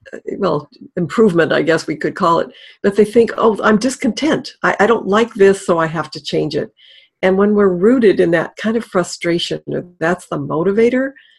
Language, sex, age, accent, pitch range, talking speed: English, female, 60-79, American, 165-210 Hz, 195 wpm